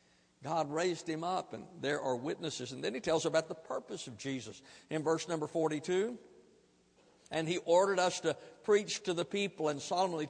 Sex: male